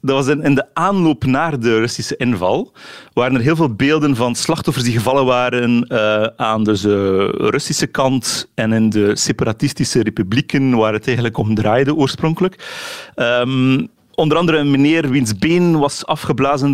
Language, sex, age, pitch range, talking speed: Dutch, male, 40-59, 115-145 Hz, 160 wpm